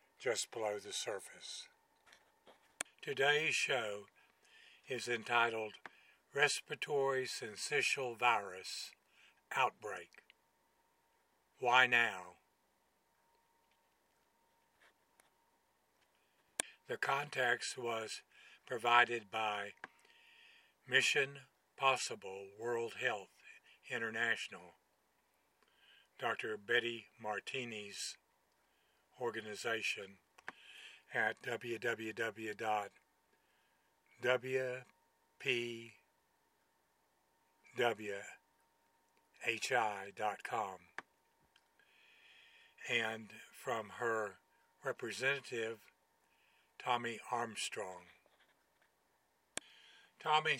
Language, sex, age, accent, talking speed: English, male, 60-79, American, 45 wpm